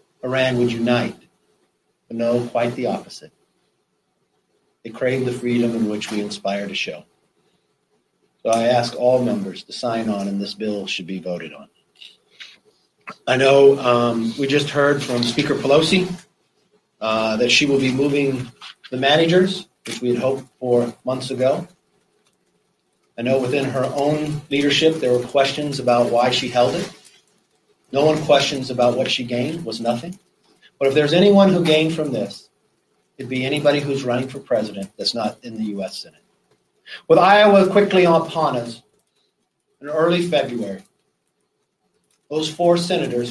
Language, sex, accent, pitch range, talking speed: English, male, American, 120-155 Hz, 155 wpm